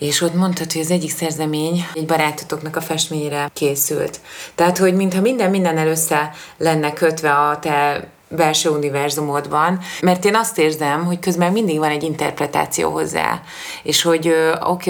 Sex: female